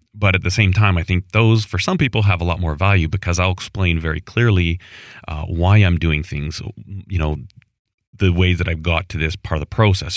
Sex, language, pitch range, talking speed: male, English, 85-110 Hz, 230 wpm